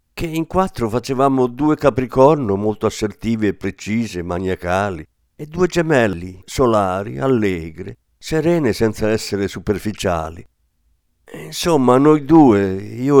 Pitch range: 90-135 Hz